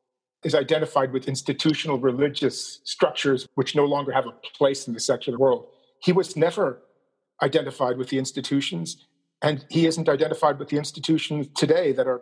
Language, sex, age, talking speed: English, male, 40-59, 160 wpm